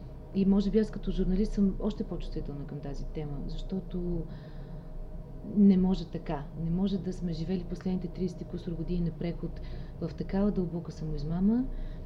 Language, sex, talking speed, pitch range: Bulgarian, female, 150 wpm, 160-200 Hz